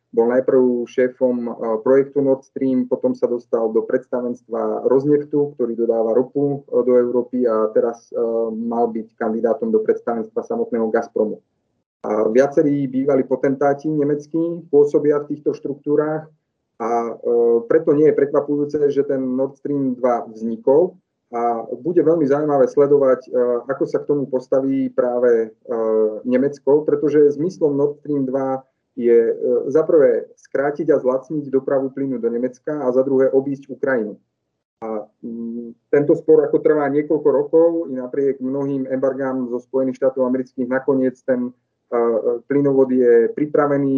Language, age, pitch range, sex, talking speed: Slovak, 30-49, 125-145 Hz, male, 130 wpm